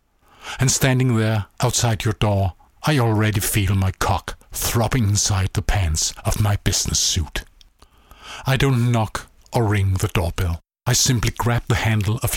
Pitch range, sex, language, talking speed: 95-120 Hz, male, English, 155 wpm